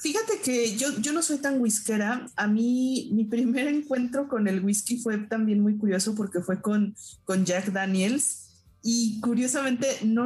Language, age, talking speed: Spanish, 30-49, 170 wpm